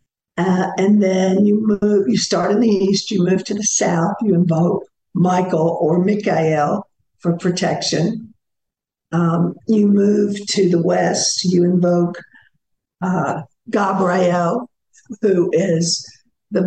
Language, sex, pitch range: English, female, 165-205 Hz